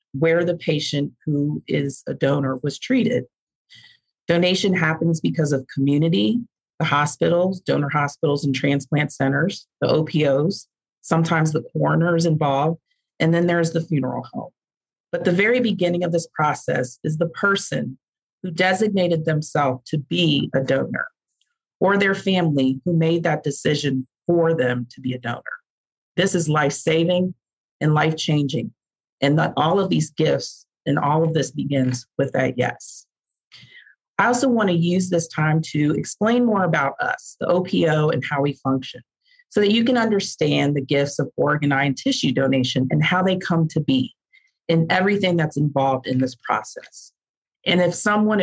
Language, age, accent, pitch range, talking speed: English, 40-59, American, 145-185 Hz, 160 wpm